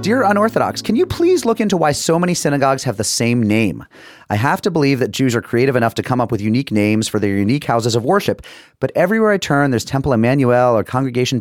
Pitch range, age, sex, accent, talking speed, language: 105-145 Hz, 30-49, male, American, 235 wpm, English